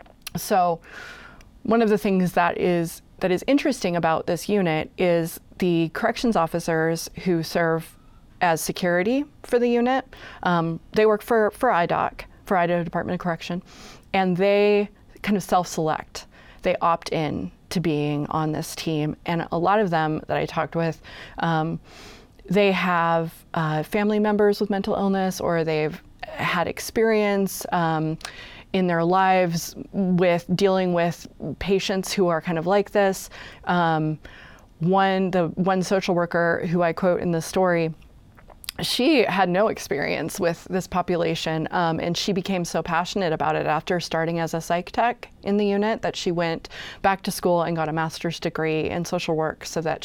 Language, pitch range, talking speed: English, 165-195 Hz, 165 wpm